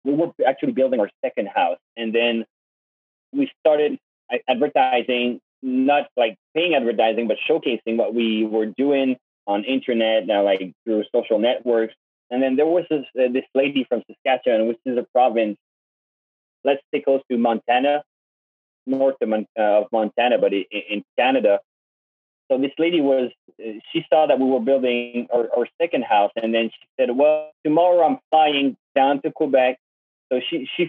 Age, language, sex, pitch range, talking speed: 20-39, English, male, 115-150 Hz, 160 wpm